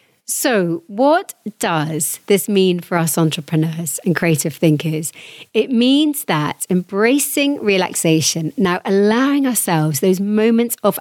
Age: 40-59